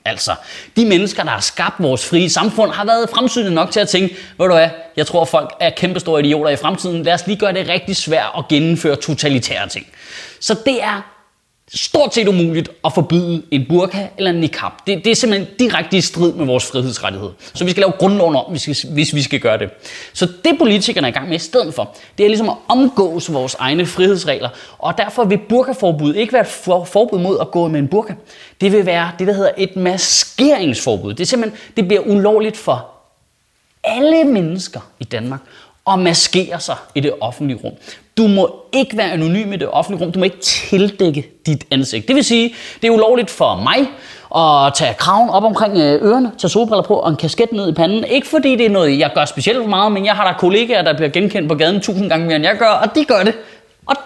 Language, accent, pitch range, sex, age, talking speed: Danish, native, 160-215 Hz, male, 20-39, 225 wpm